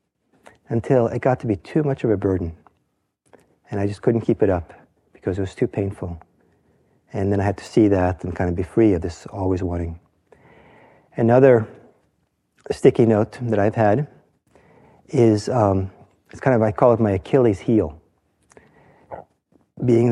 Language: English